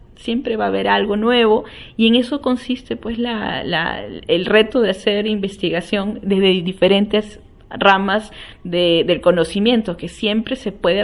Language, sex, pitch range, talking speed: Spanish, female, 185-230 Hz, 160 wpm